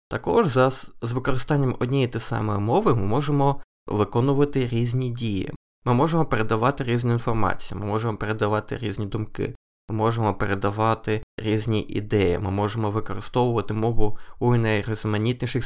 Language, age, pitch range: Ukrainian, 20-39, 105-135 Hz